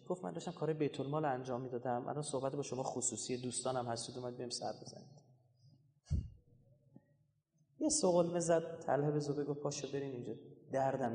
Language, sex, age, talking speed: Persian, male, 30-49, 155 wpm